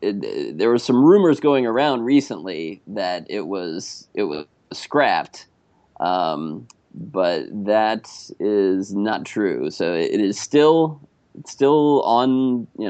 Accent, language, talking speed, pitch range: American, English, 140 wpm, 95-130 Hz